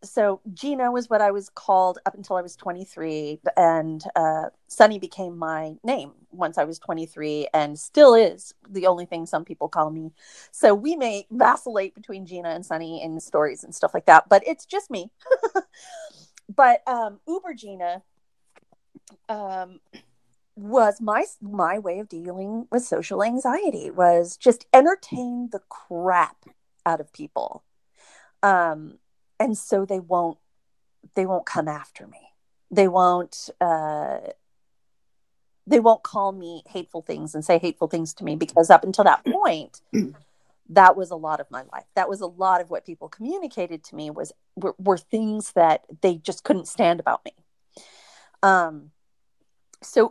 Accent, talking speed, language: American, 160 wpm, English